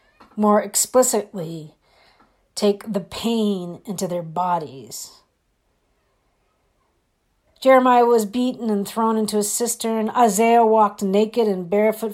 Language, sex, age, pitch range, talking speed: English, female, 50-69, 200-255 Hz, 105 wpm